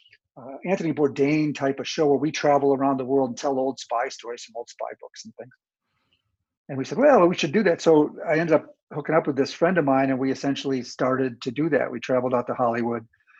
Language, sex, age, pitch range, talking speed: English, male, 50-69, 130-150 Hz, 240 wpm